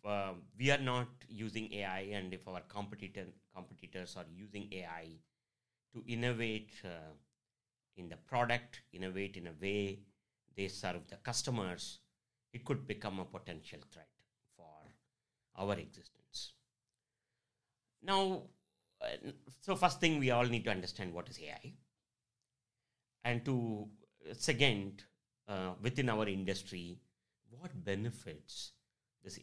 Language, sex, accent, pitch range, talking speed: English, male, Indian, 95-120 Hz, 120 wpm